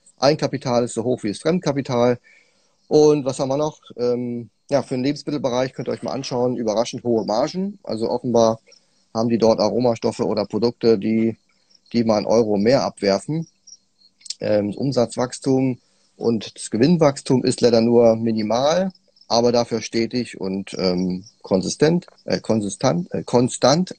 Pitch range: 110-135 Hz